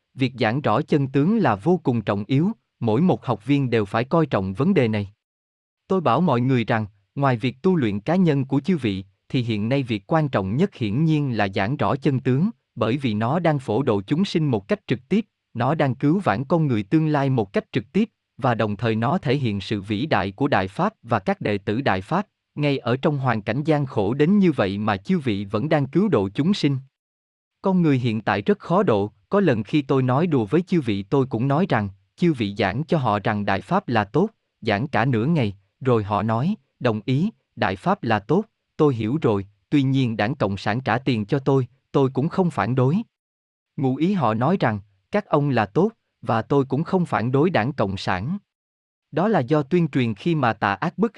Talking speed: 230 wpm